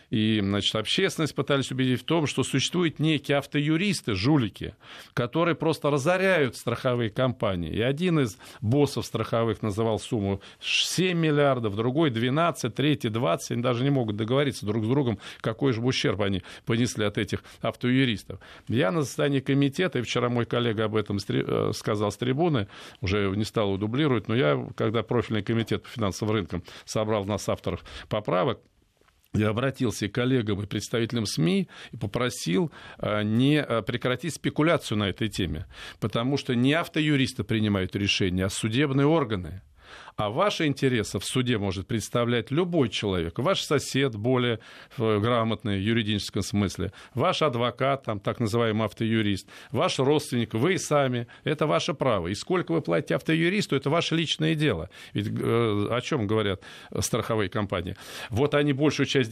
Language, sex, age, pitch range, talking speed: Russian, male, 40-59, 110-140 Hz, 150 wpm